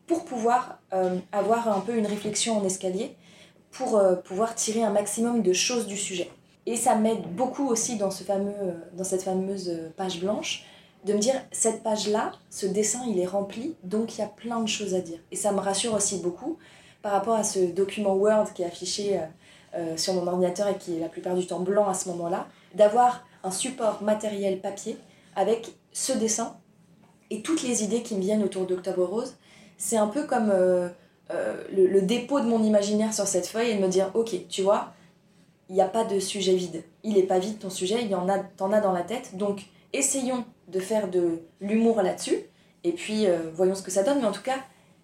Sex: female